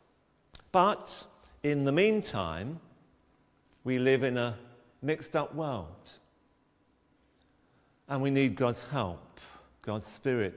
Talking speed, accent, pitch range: 95 wpm, British, 95-135 Hz